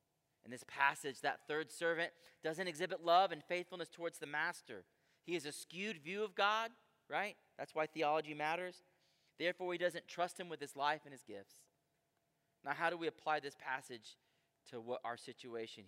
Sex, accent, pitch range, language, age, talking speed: male, American, 155-205 Hz, English, 30-49, 180 wpm